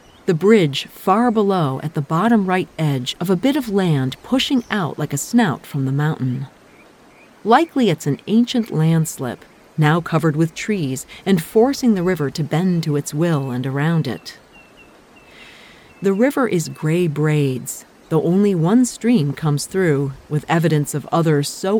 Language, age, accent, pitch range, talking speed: English, 40-59, American, 140-195 Hz, 160 wpm